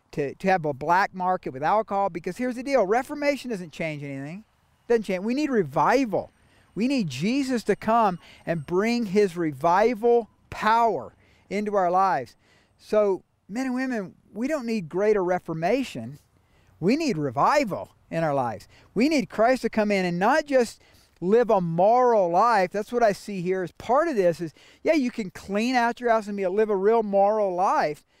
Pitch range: 165-215 Hz